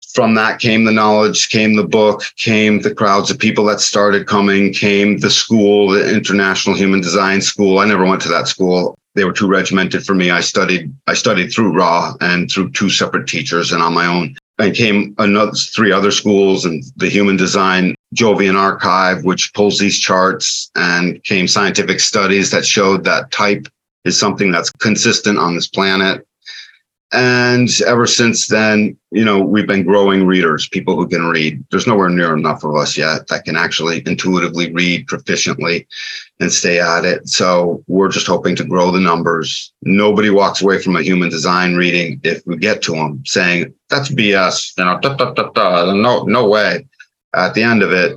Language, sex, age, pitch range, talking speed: English, male, 40-59, 90-100 Hz, 180 wpm